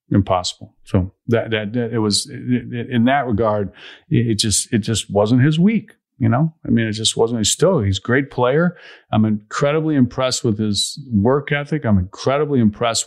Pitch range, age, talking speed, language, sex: 105-135 Hz, 40-59, 195 wpm, English, male